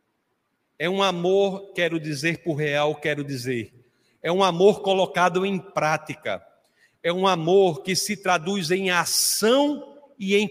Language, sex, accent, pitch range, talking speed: Portuguese, male, Brazilian, 160-200 Hz, 145 wpm